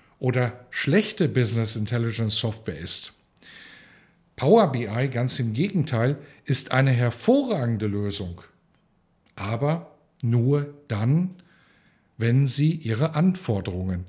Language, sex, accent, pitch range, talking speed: German, male, German, 110-145 Hz, 95 wpm